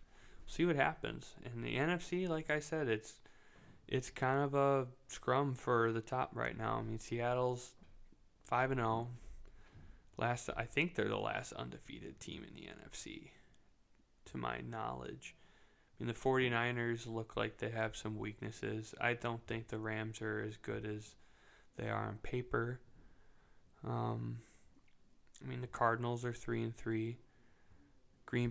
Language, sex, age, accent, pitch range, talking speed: English, male, 20-39, American, 105-125 Hz, 155 wpm